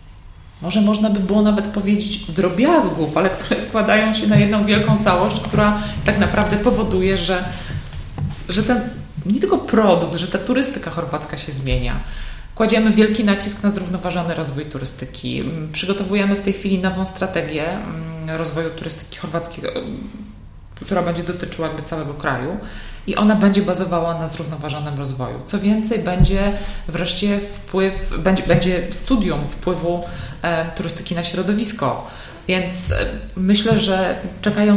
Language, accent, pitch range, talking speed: Polish, native, 160-210 Hz, 130 wpm